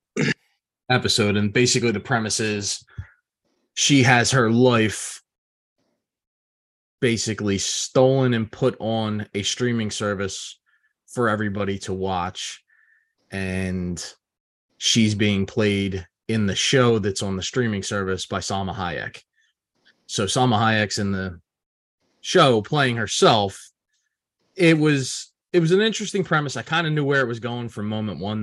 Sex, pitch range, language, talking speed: male, 100-125 Hz, English, 135 wpm